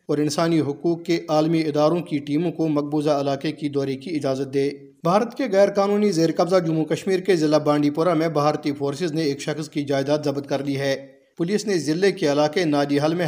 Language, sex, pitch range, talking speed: Urdu, male, 140-160 Hz, 215 wpm